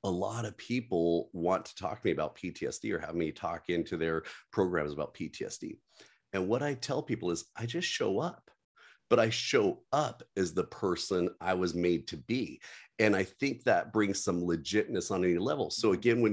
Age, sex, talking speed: 40-59, male, 200 wpm